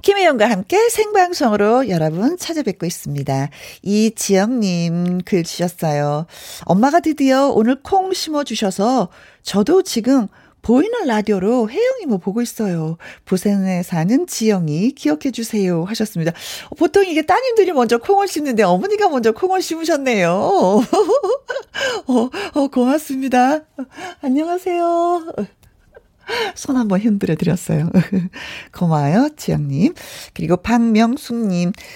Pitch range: 185-300 Hz